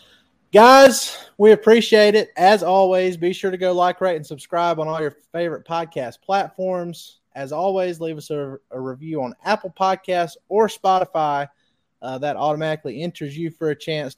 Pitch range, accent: 135-180 Hz, American